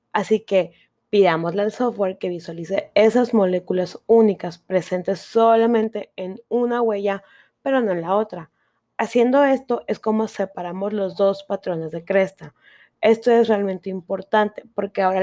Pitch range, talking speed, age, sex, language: 175-225 Hz, 140 wpm, 20-39, female, Czech